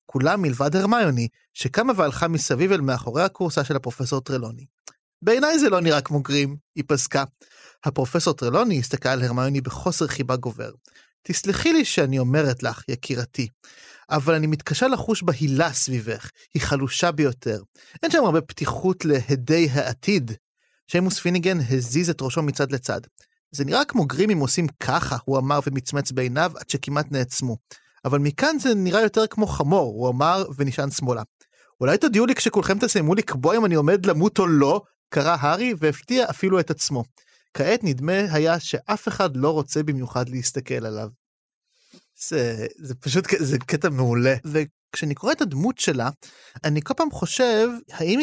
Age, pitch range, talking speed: 30-49, 130-190 Hz, 155 wpm